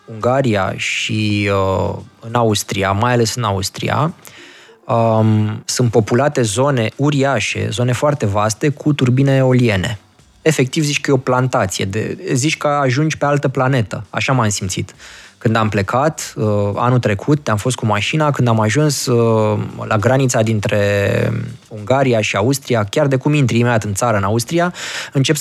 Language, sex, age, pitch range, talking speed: Romanian, male, 20-39, 105-135 Hz, 155 wpm